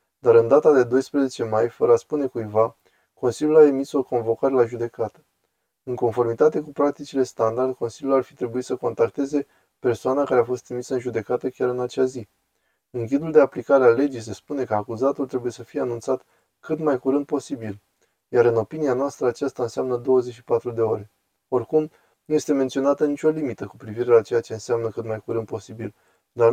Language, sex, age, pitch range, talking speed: Romanian, male, 20-39, 110-135 Hz, 190 wpm